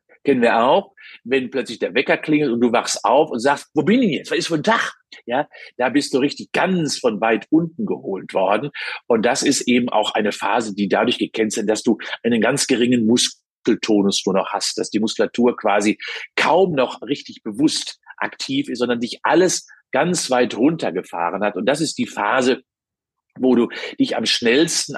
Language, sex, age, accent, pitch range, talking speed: German, male, 50-69, German, 115-165 Hz, 195 wpm